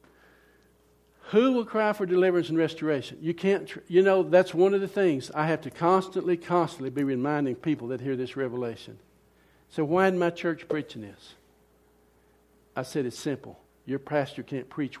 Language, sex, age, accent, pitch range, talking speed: English, male, 60-79, American, 130-175 Hz, 170 wpm